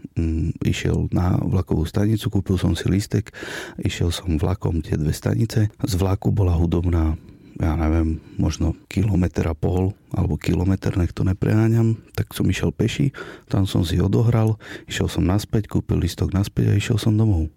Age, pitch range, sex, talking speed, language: 40-59, 90-110 Hz, male, 160 wpm, Slovak